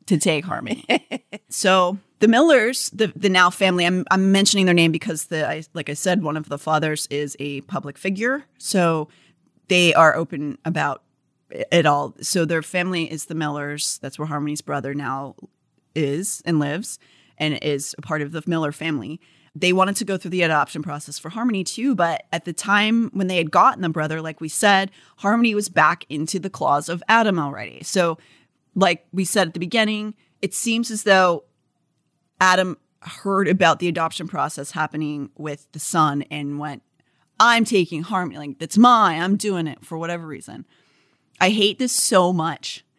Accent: American